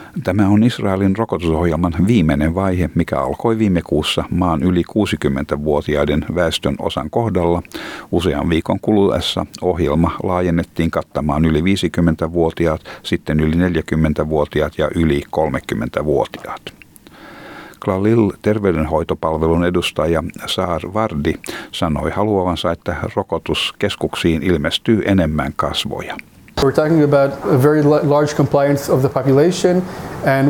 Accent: native